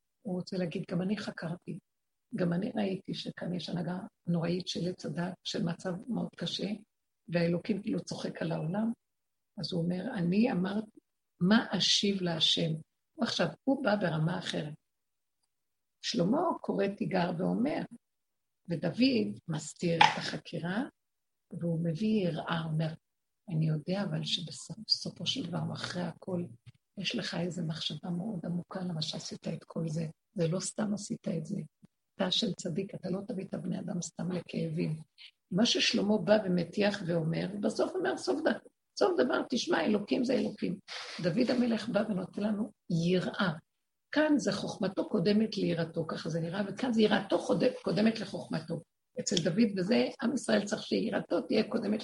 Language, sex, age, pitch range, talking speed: Hebrew, female, 60-79, 170-215 Hz, 150 wpm